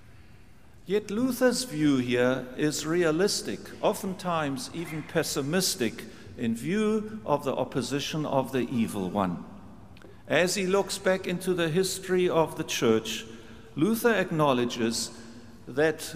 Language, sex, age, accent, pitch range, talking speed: English, male, 50-69, German, 120-180 Hz, 115 wpm